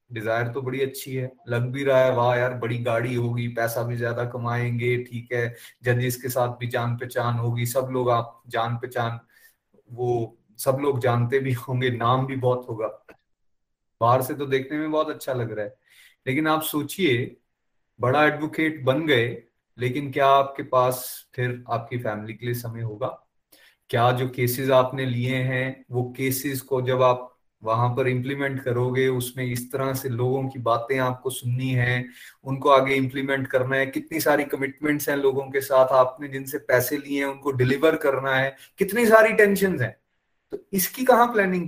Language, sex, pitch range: Hindi, male, 120-145 Hz